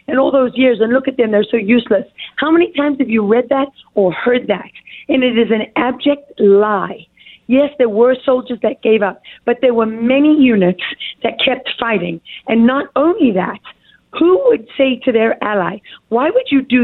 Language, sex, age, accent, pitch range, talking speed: English, female, 40-59, American, 225-275 Hz, 195 wpm